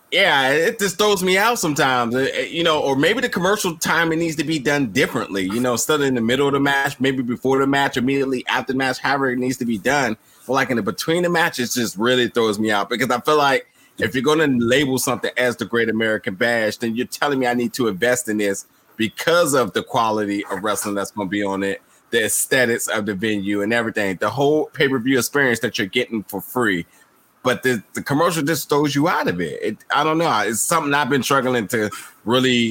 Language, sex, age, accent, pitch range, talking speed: English, male, 20-39, American, 110-135 Hz, 235 wpm